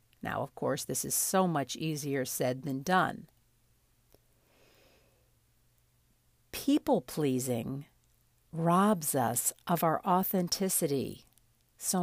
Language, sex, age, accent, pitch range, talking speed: English, female, 50-69, American, 140-190 Hz, 90 wpm